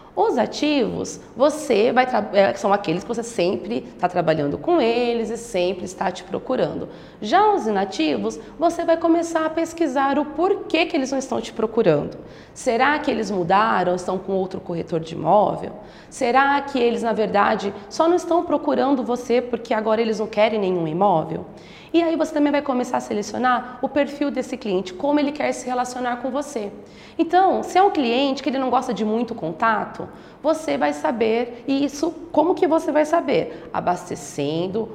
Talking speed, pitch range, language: 180 wpm, 200-285 Hz, Portuguese